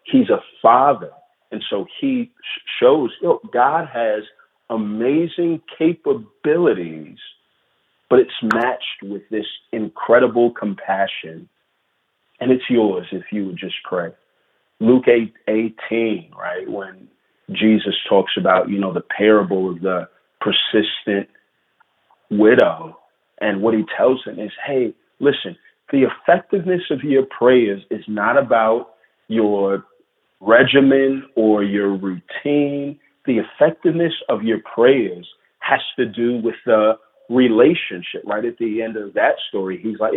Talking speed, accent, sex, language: 120 wpm, American, male, English